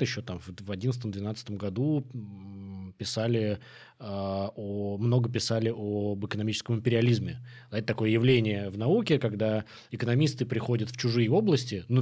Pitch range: 110-125 Hz